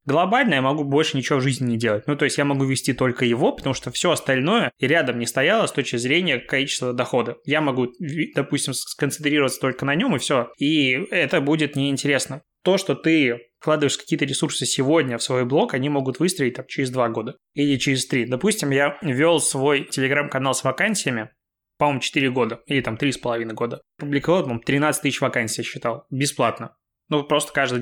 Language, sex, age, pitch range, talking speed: Russian, male, 20-39, 125-150 Hz, 190 wpm